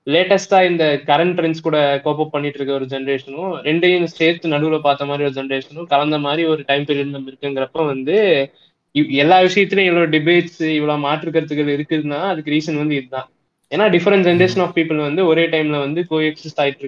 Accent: native